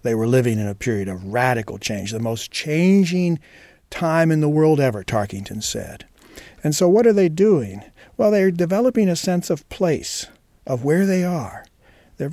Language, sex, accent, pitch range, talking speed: English, male, American, 110-155 Hz, 180 wpm